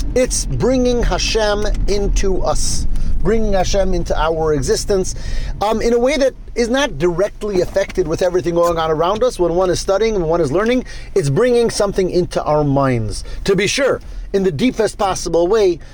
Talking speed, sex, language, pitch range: 175 wpm, male, English, 165-225 Hz